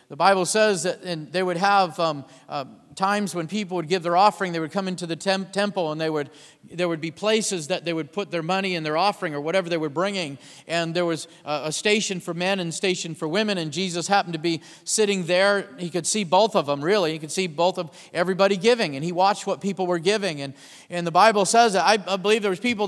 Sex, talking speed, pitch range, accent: male, 255 wpm, 160-195 Hz, American